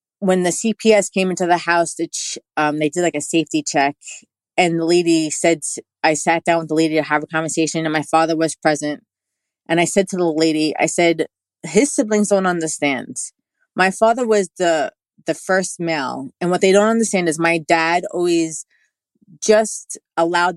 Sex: female